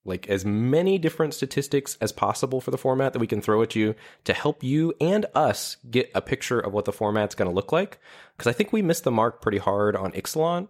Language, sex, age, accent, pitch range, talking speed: English, male, 20-39, American, 95-120 Hz, 240 wpm